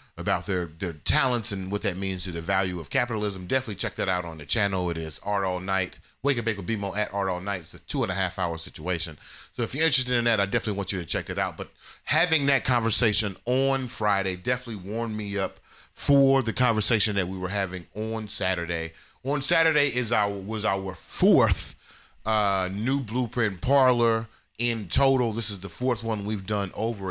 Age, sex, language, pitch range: 30-49, male, English, 90-115 Hz